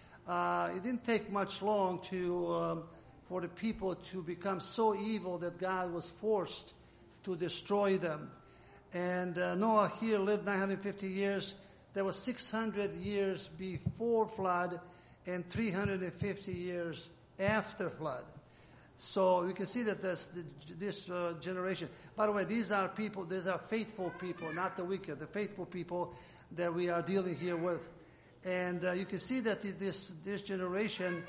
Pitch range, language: 175-200 Hz, English